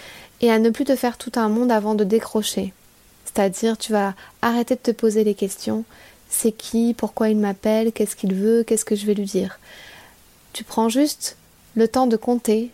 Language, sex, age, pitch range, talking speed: French, female, 20-39, 205-240 Hz, 200 wpm